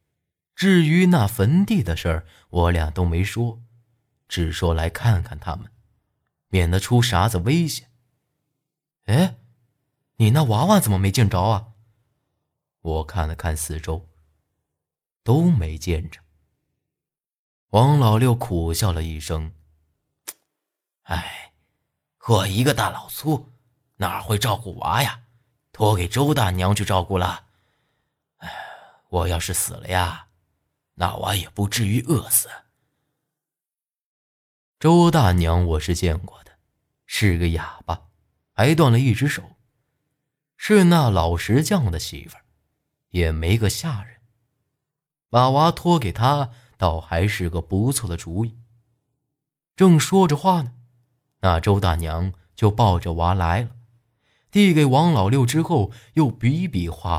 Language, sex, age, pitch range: Chinese, male, 30-49, 85-135 Hz